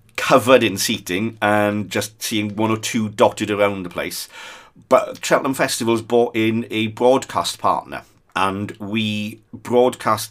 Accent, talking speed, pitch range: British, 140 wpm, 105-120 Hz